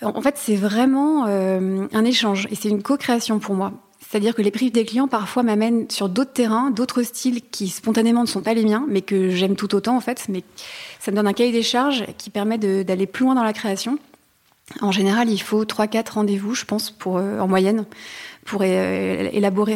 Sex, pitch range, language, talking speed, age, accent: female, 200-235 Hz, French, 215 wpm, 30-49, French